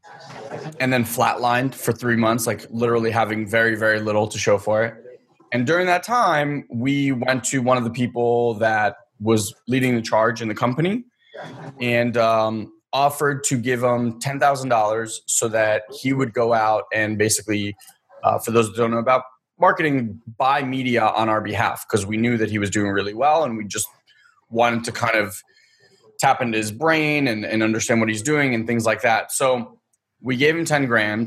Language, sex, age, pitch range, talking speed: English, male, 20-39, 110-135 Hz, 190 wpm